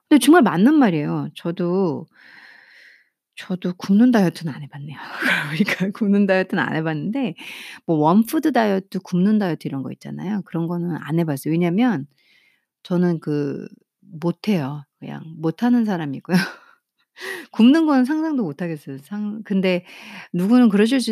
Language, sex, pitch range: Korean, female, 160-215 Hz